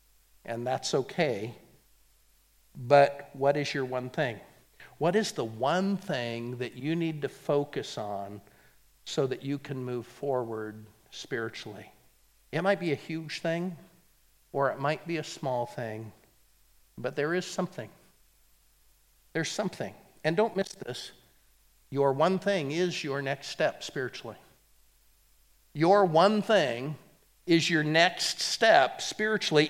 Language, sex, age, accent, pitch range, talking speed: English, male, 50-69, American, 140-200 Hz, 135 wpm